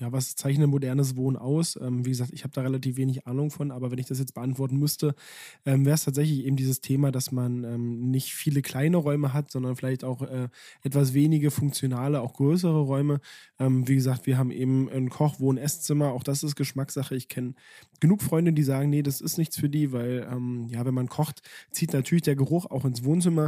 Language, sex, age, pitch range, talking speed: German, male, 20-39, 130-145 Hz, 220 wpm